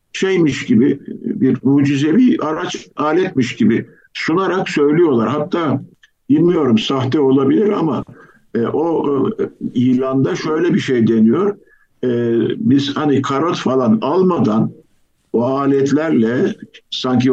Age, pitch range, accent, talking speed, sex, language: 50-69, 115-155 Hz, native, 105 wpm, male, Turkish